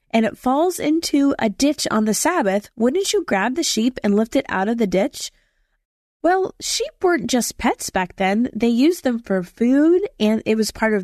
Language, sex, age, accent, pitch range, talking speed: English, female, 20-39, American, 215-310 Hz, 205 wpm